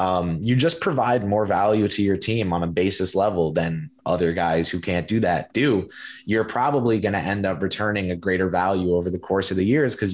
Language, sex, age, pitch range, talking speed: English, male, 20-39, 95-120 Hz, 225 wpm